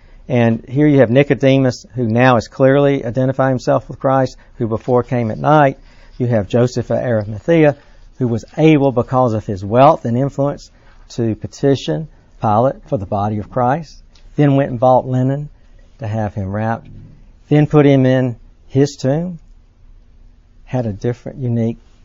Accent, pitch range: American, 100-130 Hz